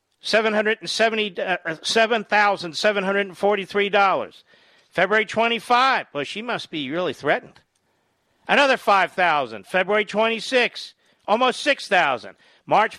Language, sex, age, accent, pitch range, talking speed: English, male, 50-69, American, 145-215 Hz, 90 wpm